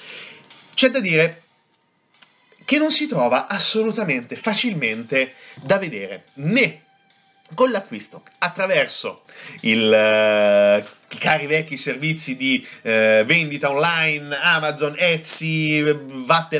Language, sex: Italian, male